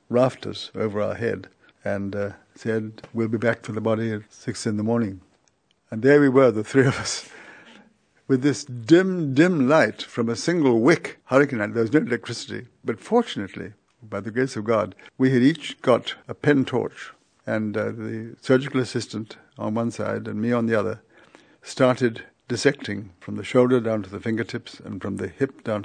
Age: 60-79